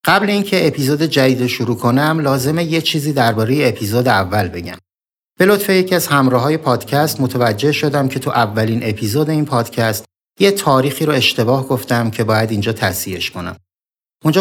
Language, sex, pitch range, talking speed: Persian, male, 110-145 Hz, 160 wpm